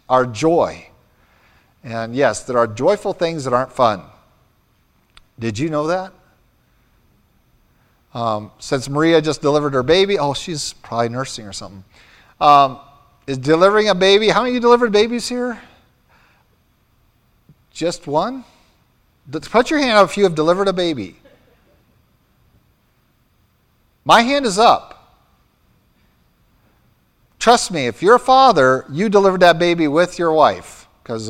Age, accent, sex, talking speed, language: 50-69, American, male, 135 wpm, English